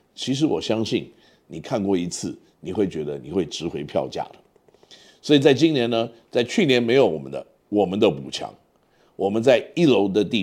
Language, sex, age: Chinese, male, 50-69